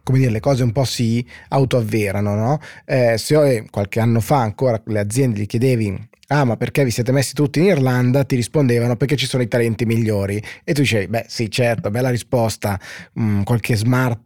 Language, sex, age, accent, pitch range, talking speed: Italian, male, 20-39, native, 110-135 Hz, 200 wpm